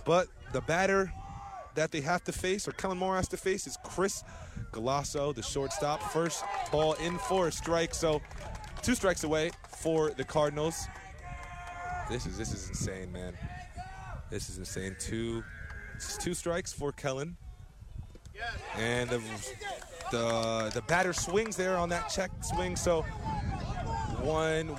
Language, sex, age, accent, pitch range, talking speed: English, male, 20-39, American, 125-170 Hz, 145 wpm